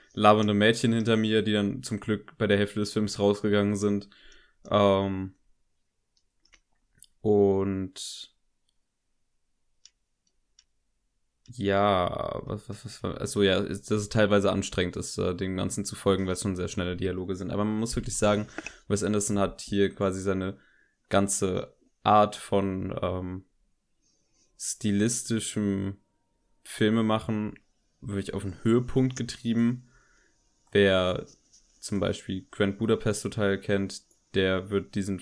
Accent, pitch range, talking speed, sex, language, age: German, 95-110 Hz, 125 wpm, male, German, 20-39